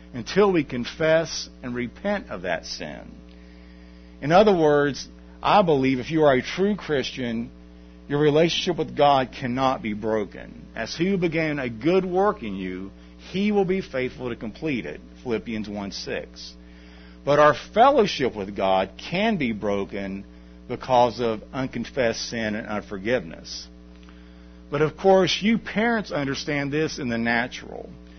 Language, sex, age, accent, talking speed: English, male, 50-69, American, 145 wpm